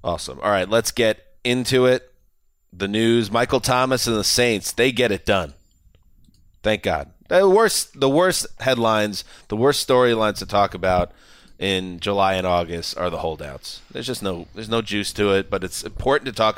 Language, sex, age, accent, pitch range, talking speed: English, male, 30-49, American, 95-115 Hz, 185 wpm